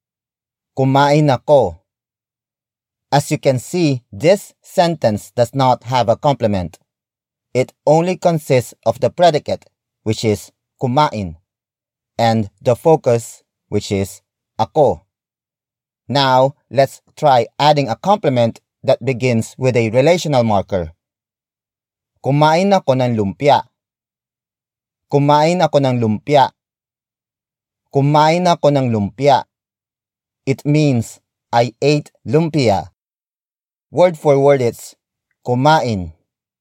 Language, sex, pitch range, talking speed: English, male, 105-140 Hz, 100 wpm